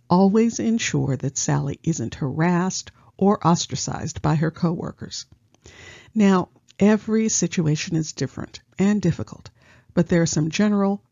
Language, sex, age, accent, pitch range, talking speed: English, female, 50-69, American, 135-185 Hz, 125 wpm